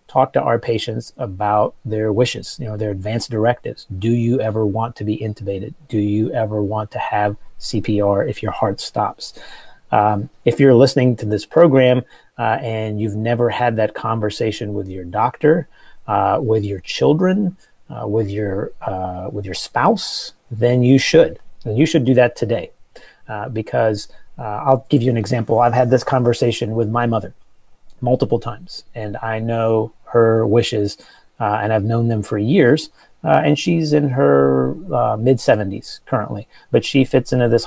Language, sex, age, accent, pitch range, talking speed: English, male, 30-49, American, 105-130 Hz, 175 wpm